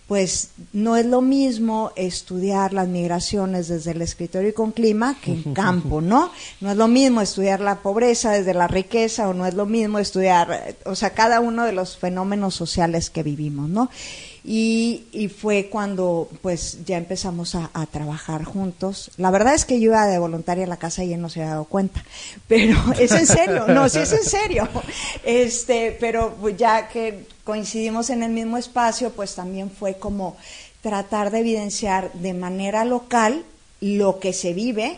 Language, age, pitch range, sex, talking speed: Spanish, 40-59, 180-225 Hz, female, 180 wpm